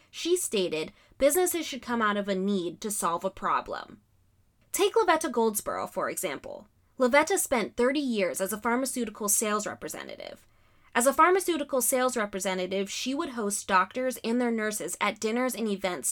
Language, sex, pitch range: English, female, 195-260 Hz